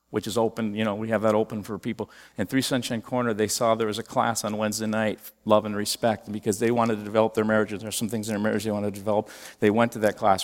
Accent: American